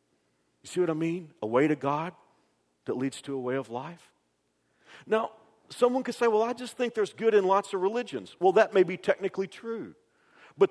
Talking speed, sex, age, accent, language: 205 wpm, male, 50-69, American, English